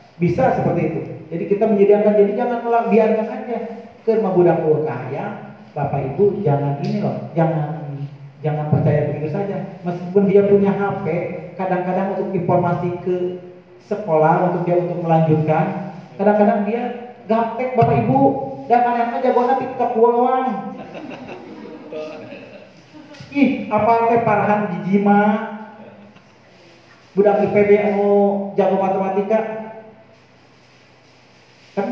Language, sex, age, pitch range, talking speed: Malay, male, 40-59, 170-225 Hz, 115 wpm